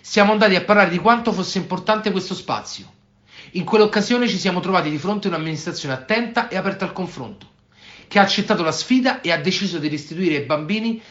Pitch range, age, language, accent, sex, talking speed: 150-200 Hz, 40-59, Italian, native, male, 195 wpm